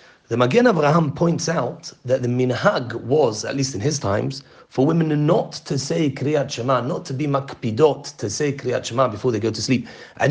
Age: 40-59